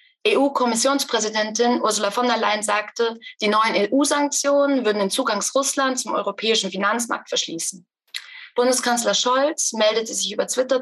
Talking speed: 140 wpm